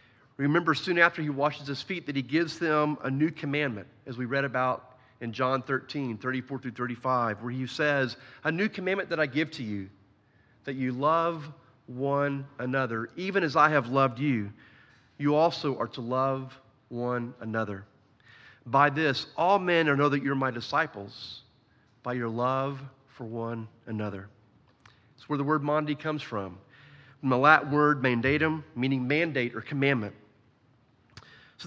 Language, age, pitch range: English, 40-59, 120-150 Hz